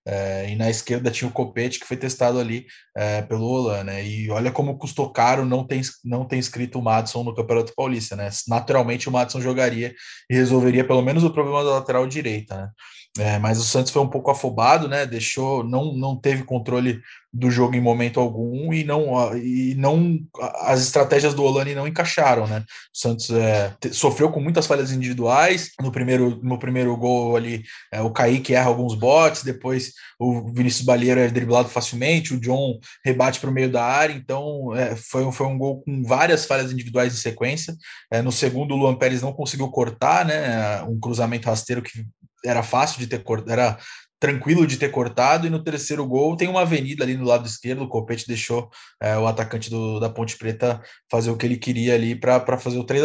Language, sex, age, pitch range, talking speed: Portuguese, male, 20-39, 120-135 Hz, 200 wpm